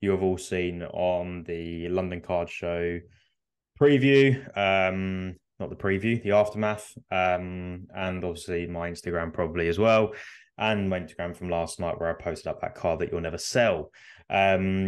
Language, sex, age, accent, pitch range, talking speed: English, male, 20-39, British, 85-100 Hz, 165 wpm